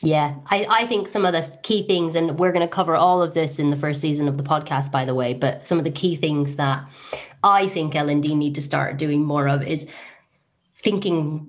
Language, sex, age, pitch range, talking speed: English, female, 30-49, 165-250 Hz, 245 wpm